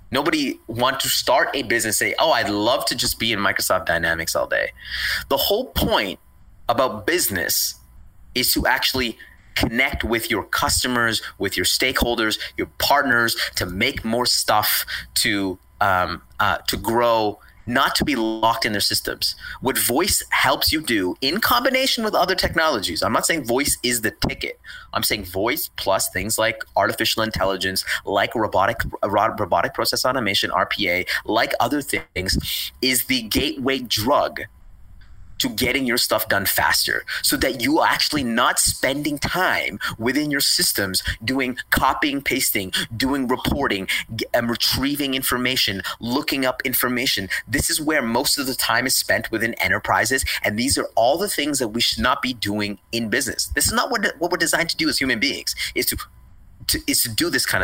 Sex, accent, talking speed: male, American, 170 wpm